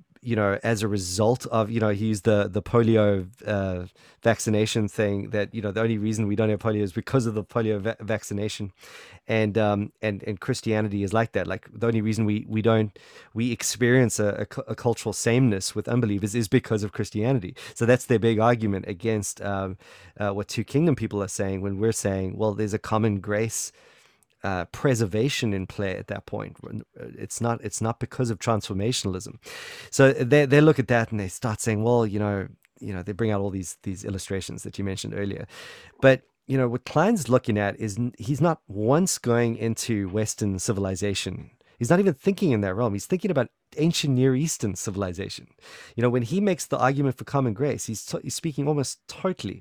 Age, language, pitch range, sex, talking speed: 30-49, English, 105-125 Hz, male, 200 wpm